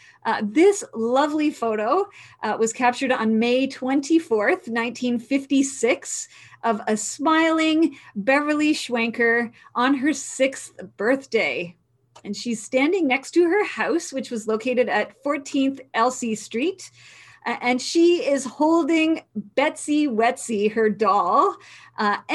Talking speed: 120 wpm